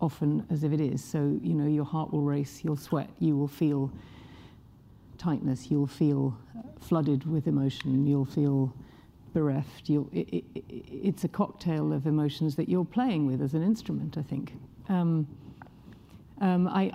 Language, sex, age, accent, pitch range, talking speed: English, female, 50-69, British, 145-185 Hz, 165 wpm